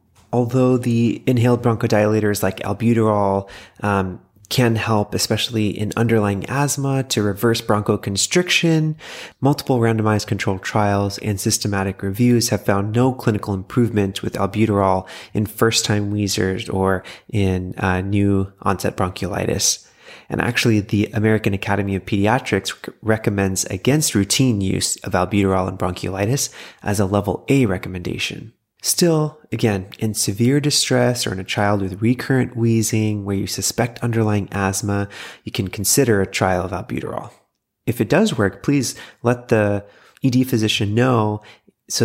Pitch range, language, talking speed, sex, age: 100-120 Hz, English, 135 wpm, male, 30-49